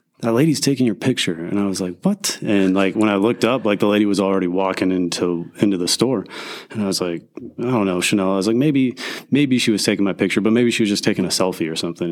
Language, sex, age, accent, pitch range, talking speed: English, male, 30-49, American, 95-135 Hz, 265 wpm